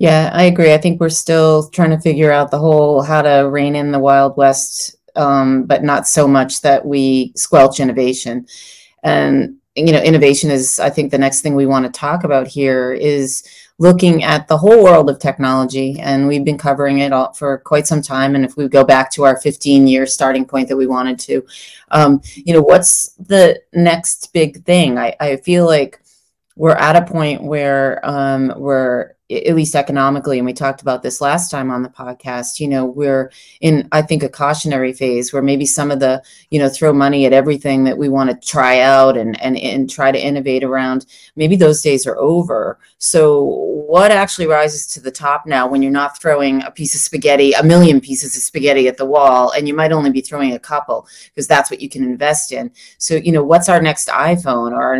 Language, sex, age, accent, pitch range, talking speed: English, female, 30-49, American, 135-155 Hz, 215 wpm